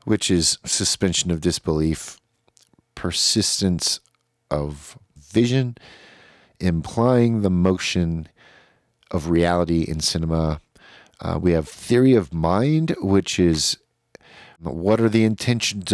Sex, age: male, 50-69